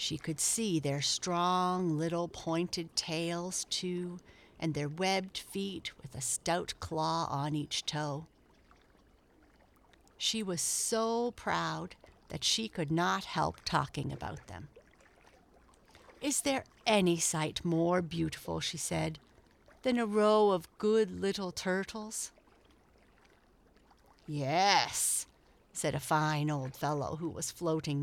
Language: English